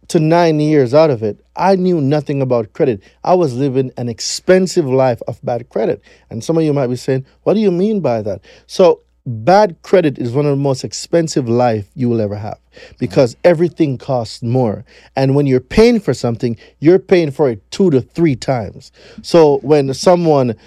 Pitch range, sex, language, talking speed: 130-180 Hz, male, English, 195 wpm